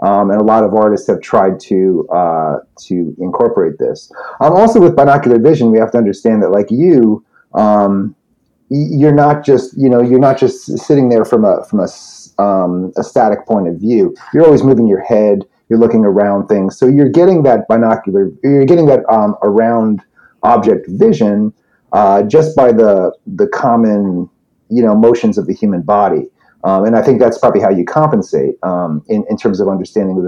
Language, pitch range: English, 100-135 Hz